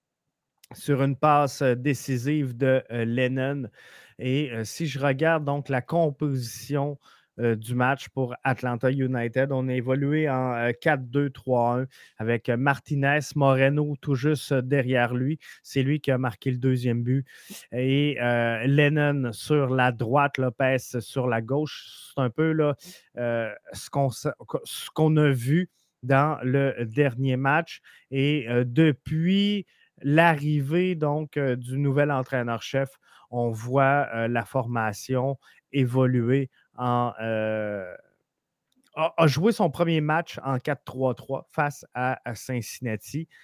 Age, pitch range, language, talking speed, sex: 30-49, 125-145 Hz, French, 130 wpm, male